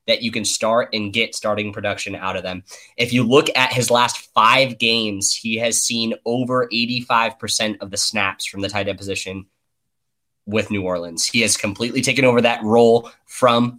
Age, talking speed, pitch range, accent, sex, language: 10-29, 185 wpm, 105-120 Hz, American, male, English